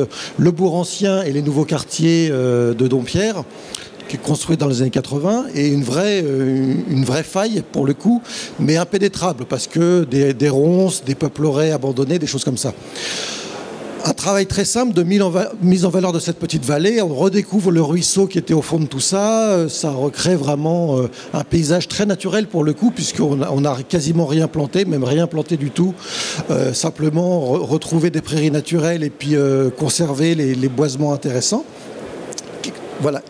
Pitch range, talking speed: 140-180 Hz, 175 wpm